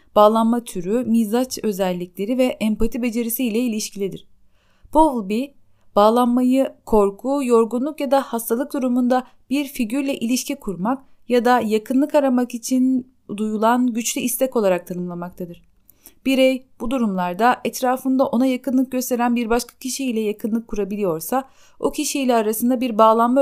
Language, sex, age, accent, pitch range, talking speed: Turkish, female, 30-49, native, 215-260 Hz, 125 wpm